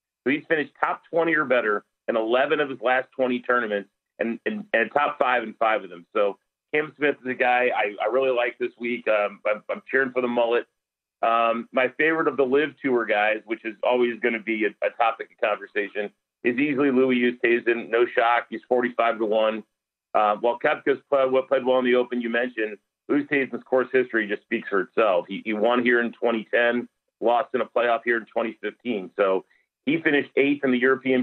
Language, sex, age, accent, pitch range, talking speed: English, male, 40-59, American, 115-130 Hz, 210 wpm